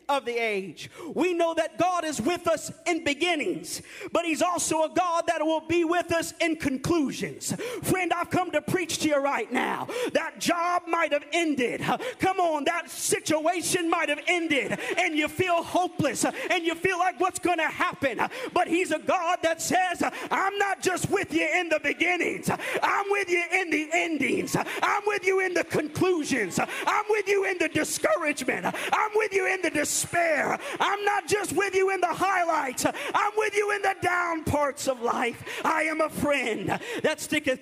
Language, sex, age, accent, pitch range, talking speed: English, male, 40-59, American, 295-355 Hz, 190 wpm